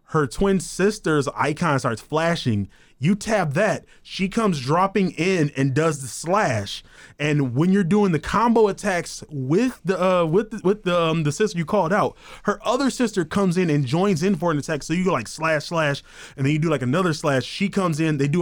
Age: 20-39